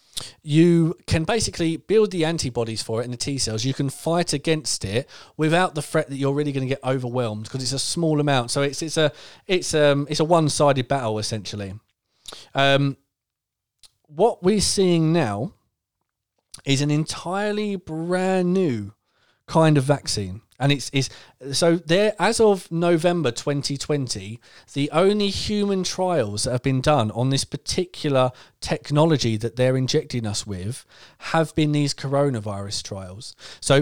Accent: British